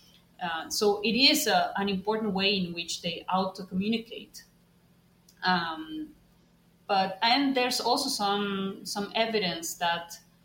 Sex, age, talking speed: female, 30-49, 125 wpm